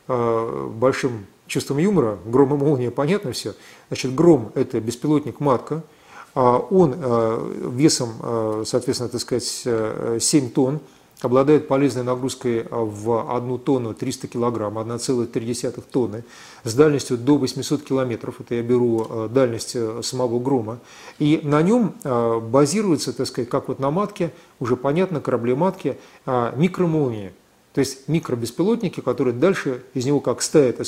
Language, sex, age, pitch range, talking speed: Russian, male, 40-59, 125-155 Hz, 125 wpm